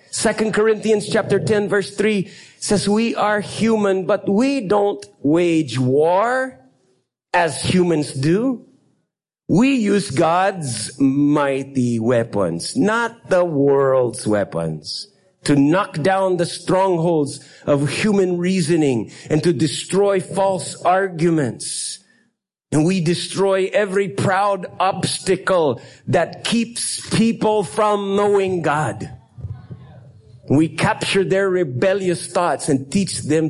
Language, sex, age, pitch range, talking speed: English, male, 50-69, 120-190 Hz, 105 wpm